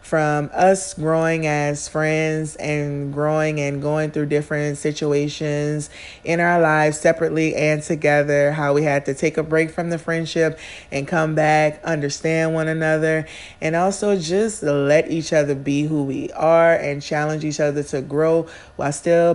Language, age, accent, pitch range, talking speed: English, 30-49, American, 150-190 Hz, 160 wpm